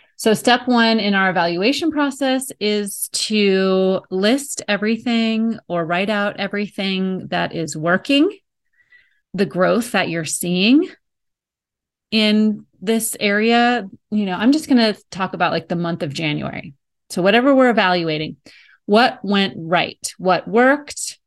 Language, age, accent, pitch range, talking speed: English, 30-49, American, 180-220 Hz, 135 wpm